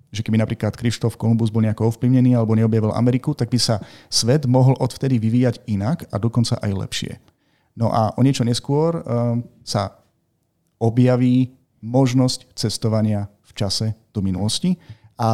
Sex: male